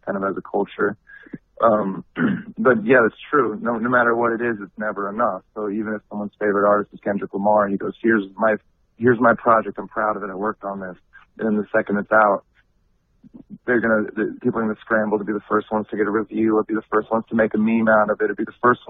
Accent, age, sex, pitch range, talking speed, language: American, 30-49, male, 100-115 Hz, 255 wpm, English